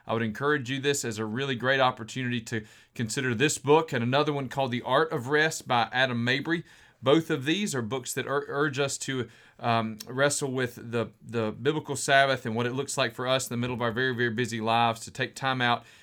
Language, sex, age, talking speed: English, male, 40-59, 230 wpm